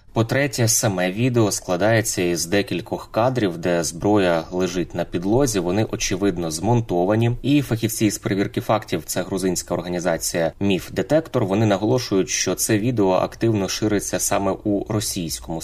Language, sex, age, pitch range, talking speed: Ukrainian, male, 20-39, 90-115 Hz, 130 wpm